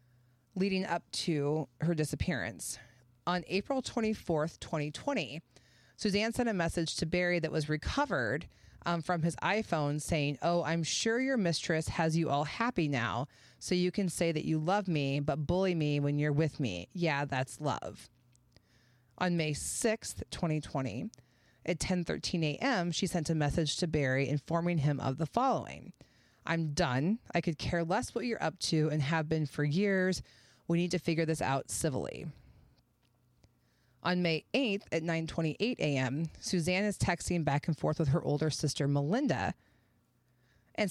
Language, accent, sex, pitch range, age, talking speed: English, American, female, 145-180 Hz, 30-49, 160 wpm